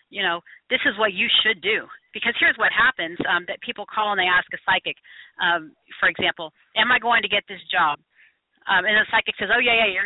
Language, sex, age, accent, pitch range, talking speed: English, female, 40-59, American, 170-210 Hz, 240 wpm